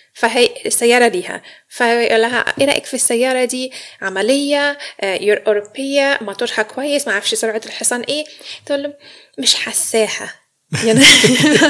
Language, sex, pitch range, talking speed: Arabic, female, 215-295 Hz, 125 wpm